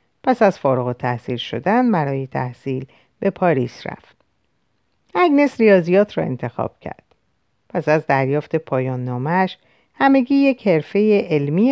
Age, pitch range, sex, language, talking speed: 50-69, 135-200 Hz, female, Persian, 125 wpm